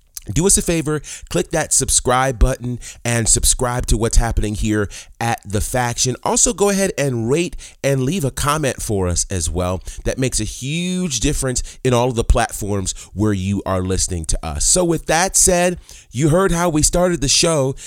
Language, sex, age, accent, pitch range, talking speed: English, male, 30-49, American, 110-155 Hz, 190 wpm